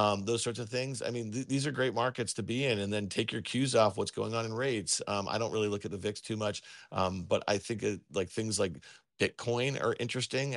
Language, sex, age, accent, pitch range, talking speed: English, male, 40-59, American, 105-125 Hz, 265 wpm